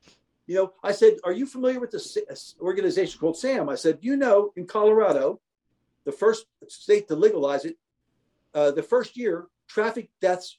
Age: 50-69